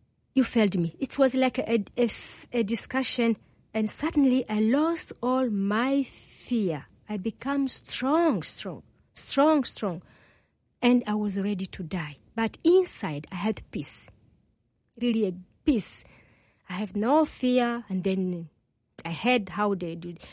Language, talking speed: English, 140 wpm